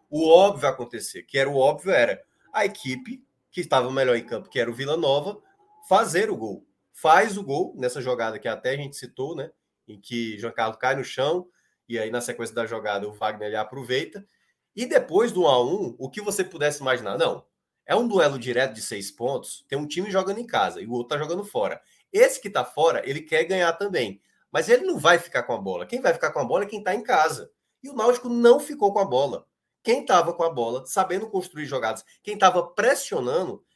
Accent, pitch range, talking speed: Brazilian, 130-205 Hz, 225 wpm